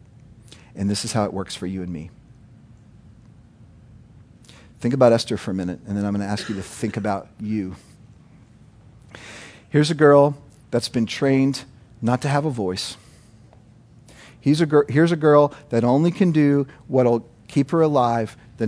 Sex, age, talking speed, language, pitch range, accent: male, 50-69, 165 wpm, English, 115-145 Hz, American